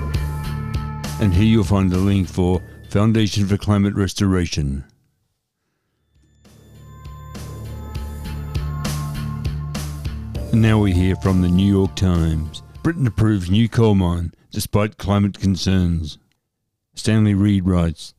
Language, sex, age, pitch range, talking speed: English, male, 60-79, 90-110 Hz, 100 wpm